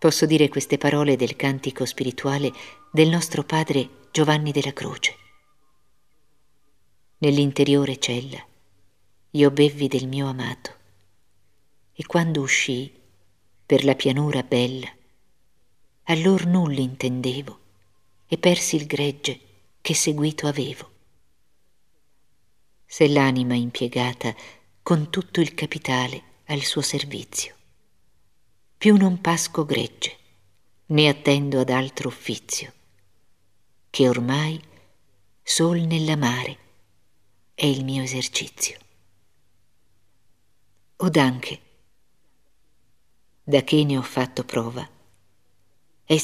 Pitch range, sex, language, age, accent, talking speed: 110-150 Hz, female, Italian, 50-69, native, 95 wpm